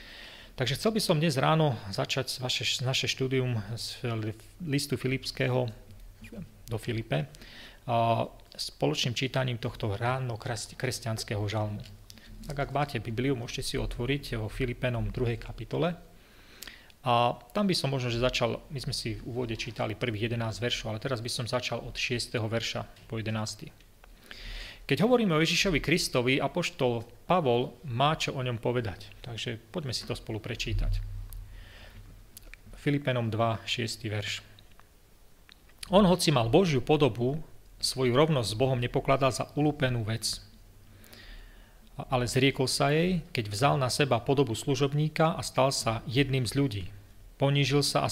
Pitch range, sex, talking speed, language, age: 110-140 Hz, male, 140 wpm, Slovak, 30-49